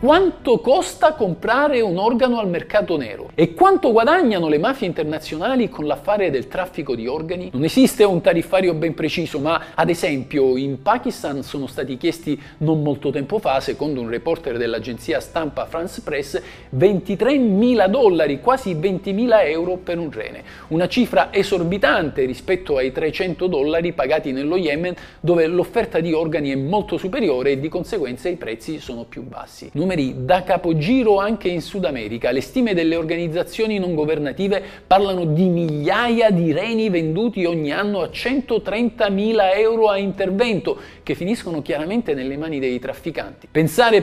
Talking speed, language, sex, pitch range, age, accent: 150 wpm, Italian, male, 155-215 Hz, 50-69, native